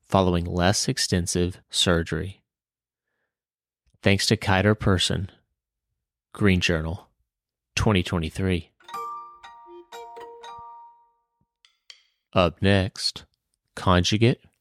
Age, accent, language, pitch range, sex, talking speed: 30-49, American, English, 90-115 Hz, male, 60 wpm